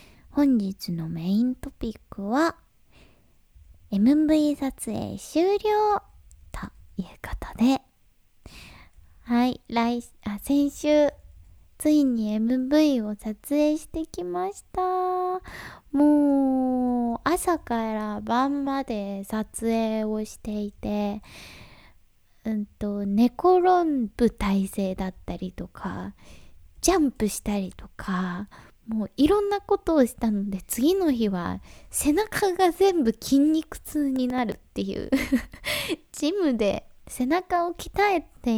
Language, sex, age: Japanese, female, 20-39